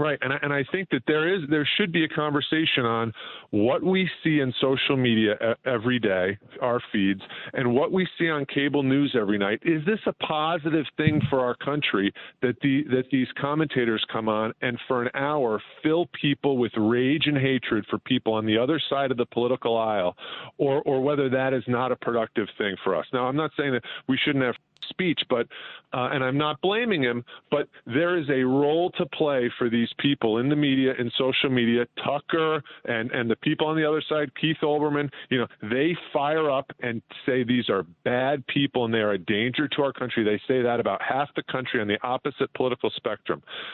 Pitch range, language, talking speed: 120-150 Hz, English, 210 wpm